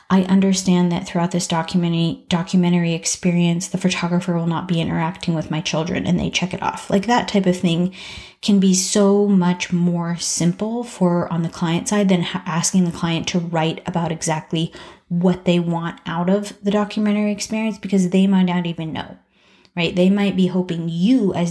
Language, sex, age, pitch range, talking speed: English, female, 30-49, 175-200 Hz, 185 wpm